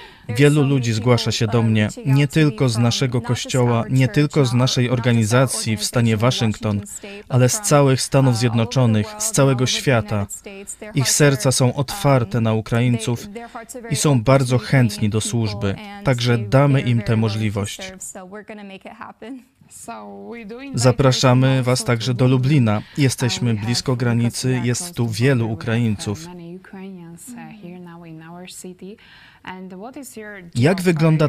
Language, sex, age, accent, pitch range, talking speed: Polish, male, 20-39, native, 120-165 Hz, 110 wpm